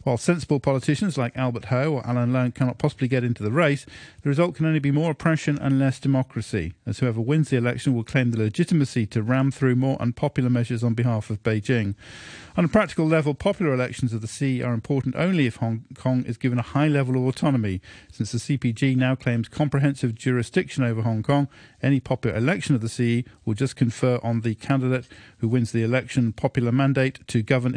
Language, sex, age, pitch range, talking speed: English, male, 50-69, 115-145 Hz, 205 wpm